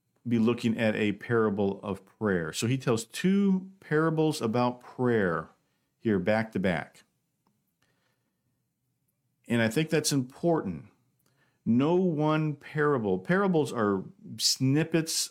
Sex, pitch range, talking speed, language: male, 120-165 Hz, 115 wpm, English